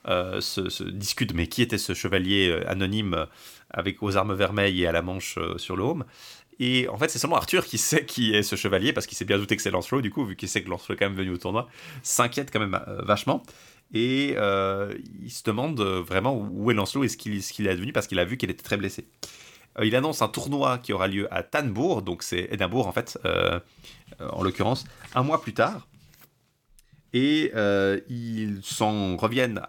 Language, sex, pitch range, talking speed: French, male, 100-125 Hz, 230 wpm